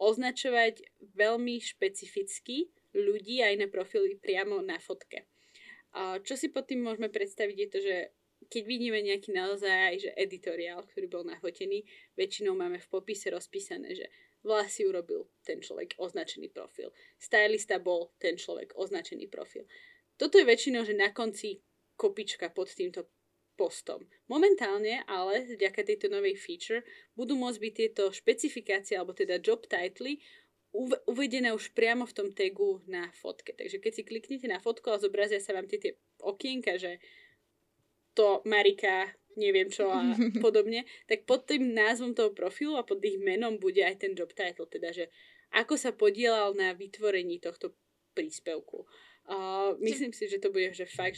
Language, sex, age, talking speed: English, female, 20-39, 155 wpm